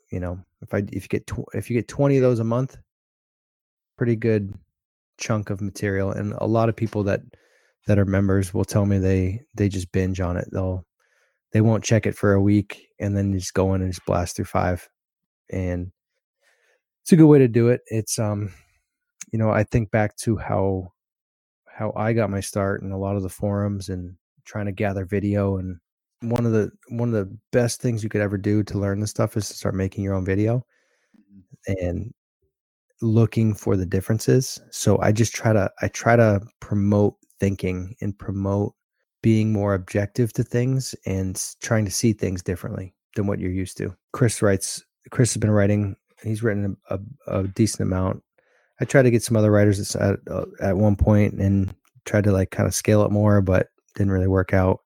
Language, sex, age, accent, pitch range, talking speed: English, male, 20-39, American, 95-110 Hz, 200 wpm